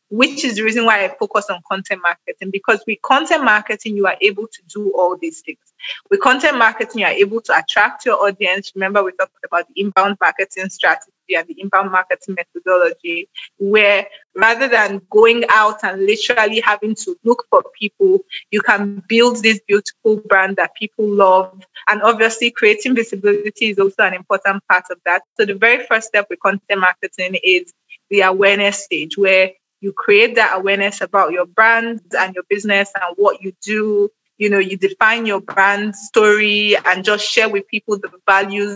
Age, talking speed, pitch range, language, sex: 20-39, 185 wpm, 195-230 Hz, English, female